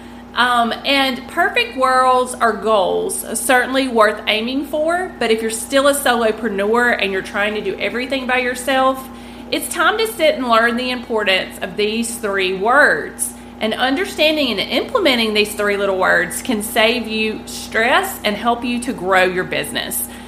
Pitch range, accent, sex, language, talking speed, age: 215-270 Hz, American, female, English, 165 wpm, 30-49